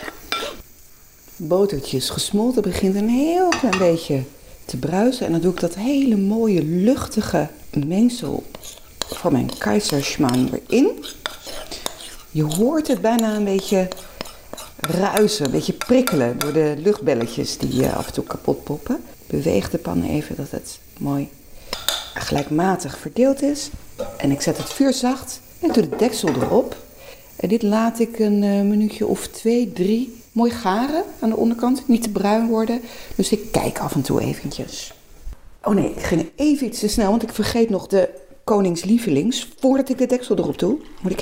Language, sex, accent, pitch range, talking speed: Dutch, female, Dutch, 165-230 Hz, 160 wpm